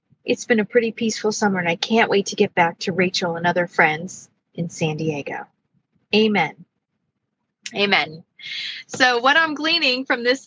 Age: 20-39